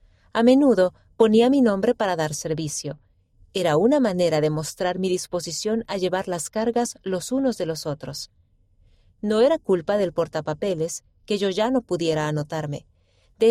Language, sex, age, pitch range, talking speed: Spanish, female, 40-59, 150-225 Hz, 160 wpm